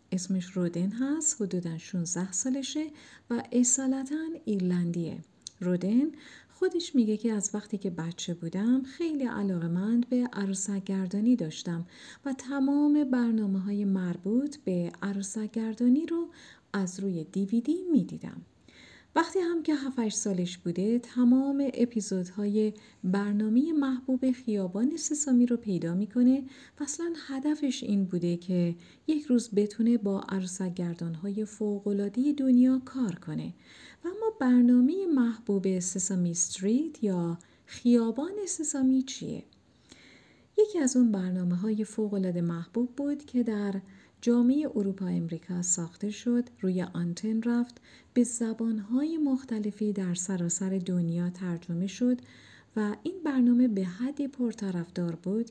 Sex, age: female, 50-69